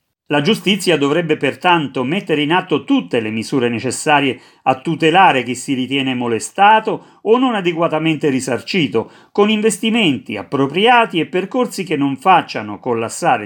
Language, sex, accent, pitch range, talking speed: Italian, male, native, 135-195 Hz, 135 wpm